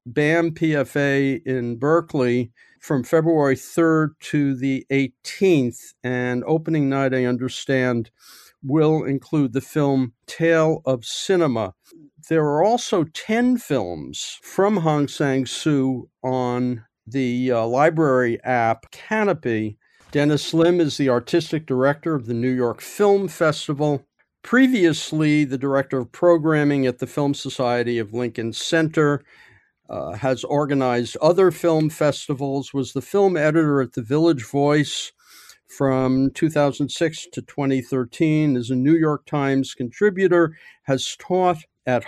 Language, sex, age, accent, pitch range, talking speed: English, male, 50-69, American, 130-165 Hz, 125 wpm